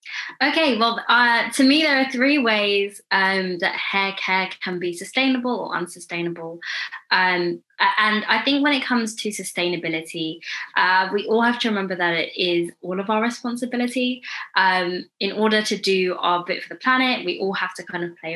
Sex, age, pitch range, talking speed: female, 20-39, 175-230 Hz, 185 wpm